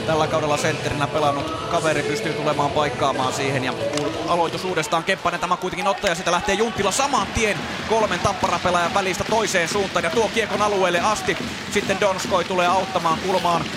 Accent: native